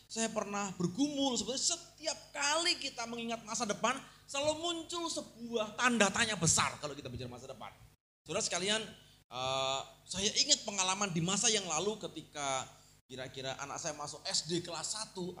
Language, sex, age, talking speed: Indonesian, male, 30-49, 150 wpm